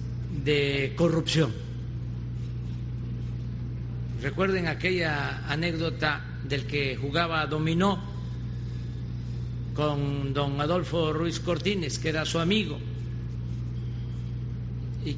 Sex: male